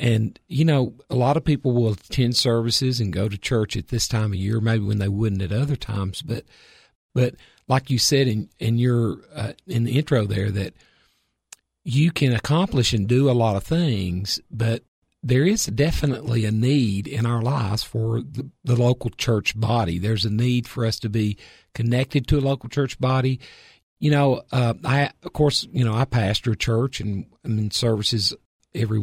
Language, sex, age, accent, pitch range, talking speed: English, male, 50-69, American, 110-135 Hz, 195 wpm